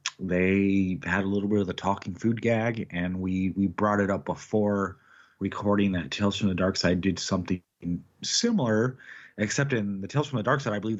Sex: male